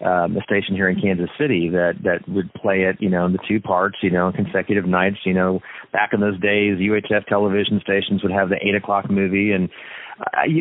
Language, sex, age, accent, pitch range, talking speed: English, male, 40-59, American, 95-115 Hz, 220 wpm